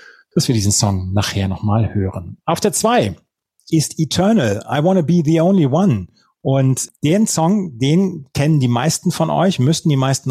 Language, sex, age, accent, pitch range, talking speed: German, male, 30-49, German, 125-165 Hz, 175 wpm